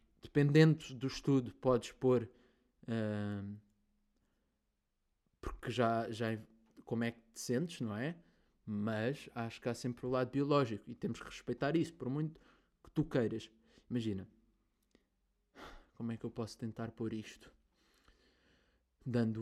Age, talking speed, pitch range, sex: 20-39, 140 wpm, 105-125 Hz, male